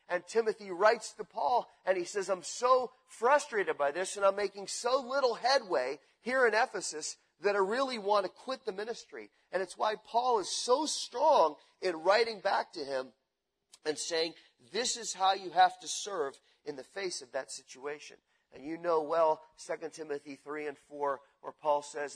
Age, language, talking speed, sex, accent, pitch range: 40-59, English, 185 wpm, male, American, 155-230 Hz